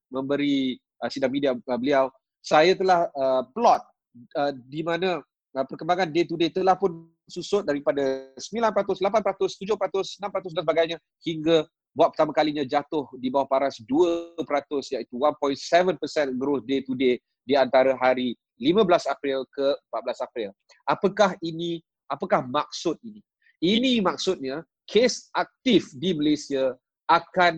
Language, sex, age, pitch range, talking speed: Malay, male, 30-49, 135-170 Hz, 130 wpm